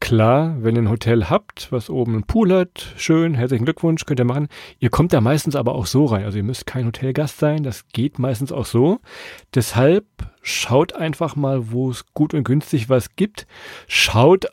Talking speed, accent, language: 200 wpm, German, German